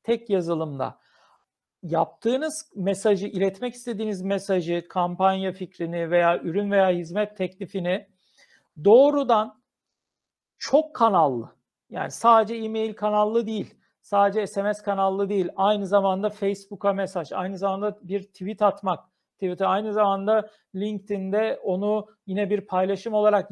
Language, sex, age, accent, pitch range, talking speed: Turkish, male, 50-69, native, 180-210 Hz, 110 wpm